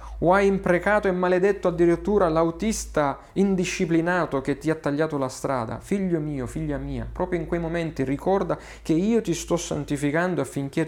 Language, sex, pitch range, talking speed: Italian, male, 120-165 Hz, 160 wpm